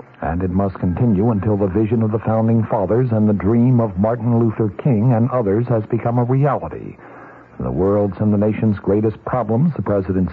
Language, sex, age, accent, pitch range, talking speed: English, male, 60-79, American, 100-115 Hz, 190 wpm